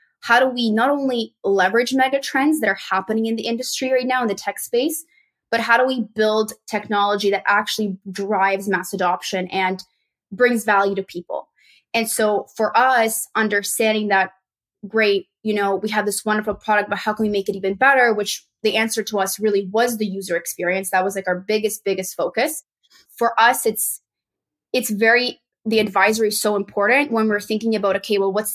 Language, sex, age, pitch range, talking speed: English, female, 20-39, 195-220 Hz, 195 wpm